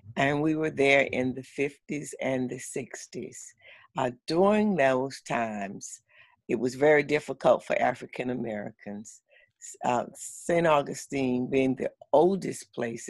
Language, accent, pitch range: English, American, 120-140 Hz